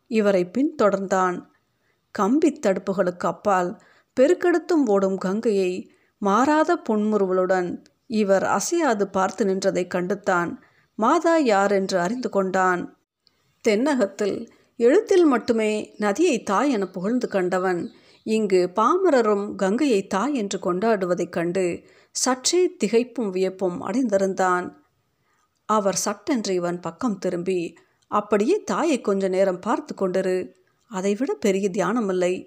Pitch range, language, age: 185-245 Hz, Tamil, 50-69